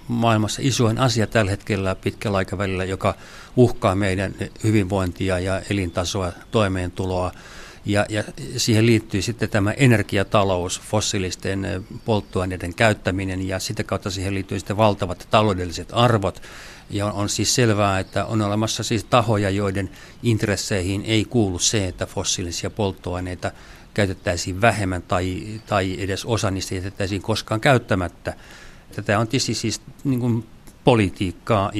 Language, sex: Finnish, male